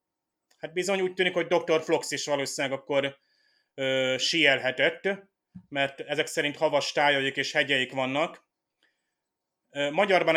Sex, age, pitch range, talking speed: male, 30-49, 135-155 Hz, 115 wpm